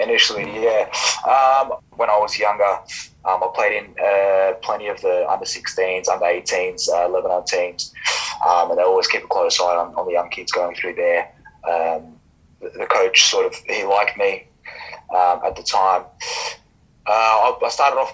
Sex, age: male, 20-39